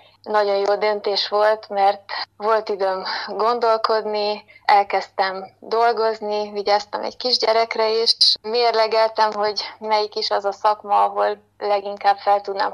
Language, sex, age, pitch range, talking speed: Hungarian, female, 20-39, 190-210 Hz, 120 wpm